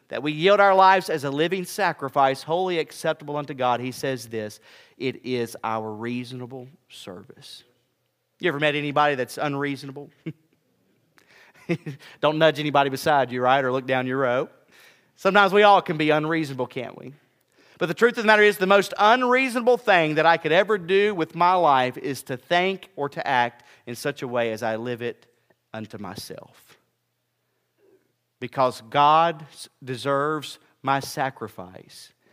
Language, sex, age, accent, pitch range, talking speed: English, male, 40-59, American, 125-160 Hz, 160 wpm